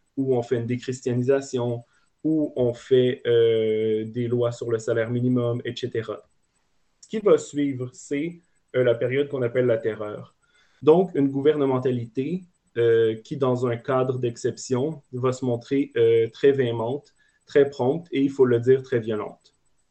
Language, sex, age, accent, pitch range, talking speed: French, male, 30-49, Canadian, 120-140 Hz, 155 wpm